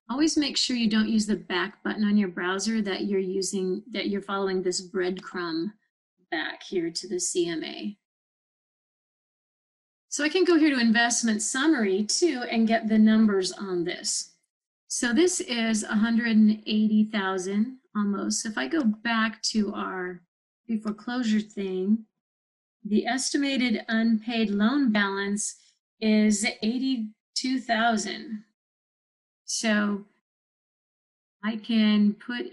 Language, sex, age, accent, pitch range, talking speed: English, female, 30-49, American, 200-230 Hz, 120 wpm